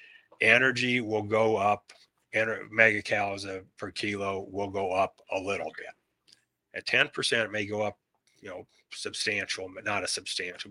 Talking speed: 150 wpm